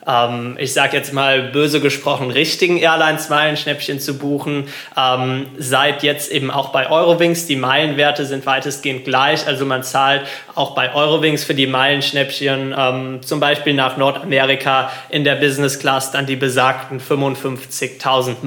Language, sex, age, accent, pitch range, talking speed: German, male, 20-39, German, 135-150 Hz, 145 wpm